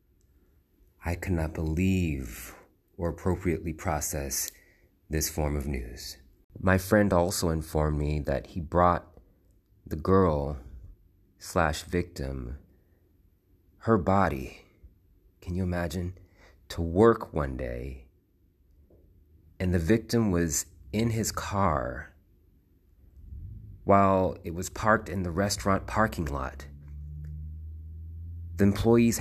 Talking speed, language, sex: 105 wpm, English, male